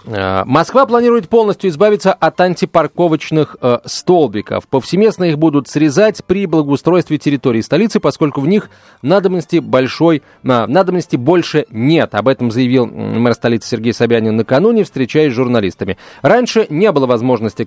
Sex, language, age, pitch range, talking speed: male, Russian, 30-49, 120-175 Hz, 130 wpm